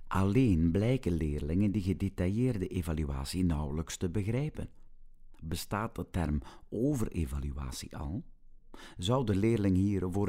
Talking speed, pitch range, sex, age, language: 110 wpm, 75-95 Hz, male, 50-69, Dutch